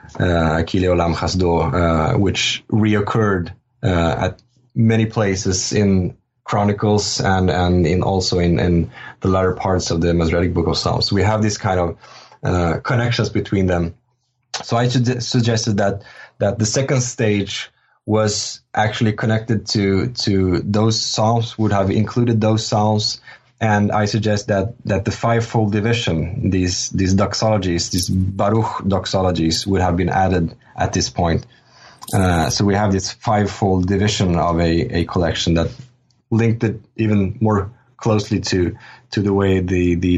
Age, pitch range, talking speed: 20-39, 90-115 Hz, 150 wpm